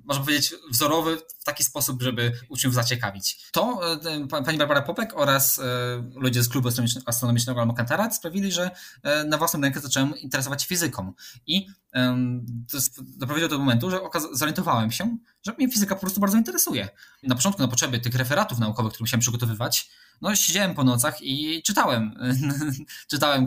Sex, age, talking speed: male, 20-39, 160 wpm